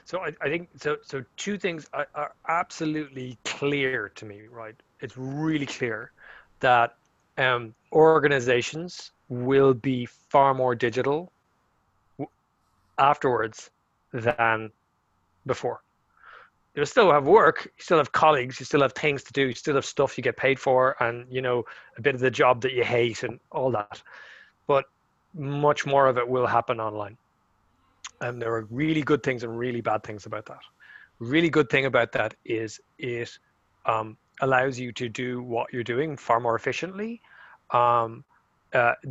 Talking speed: 160 wpm